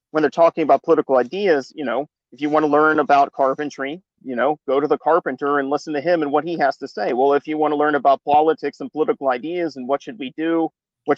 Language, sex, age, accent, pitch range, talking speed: English, male, 40-59, American, 130-160 Hz, 245 wpm